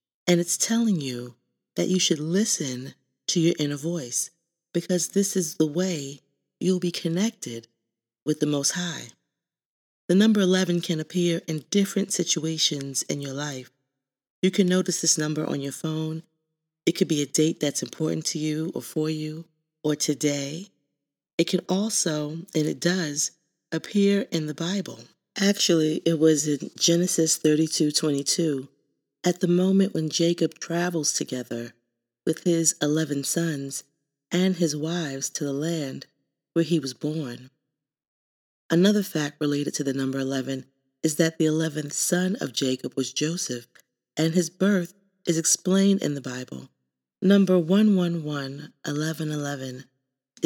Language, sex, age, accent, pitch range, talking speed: English, female, 40-59, American, 140-175 Hz, 145 wpm